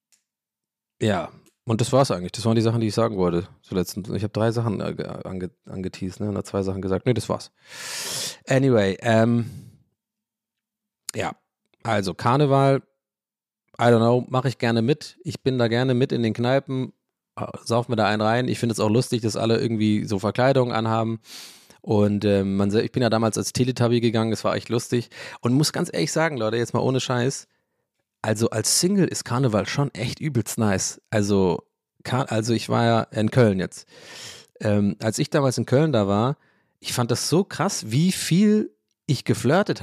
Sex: male